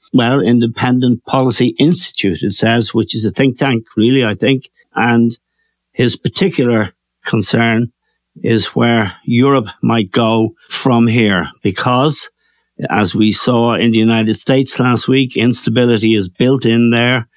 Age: 60-79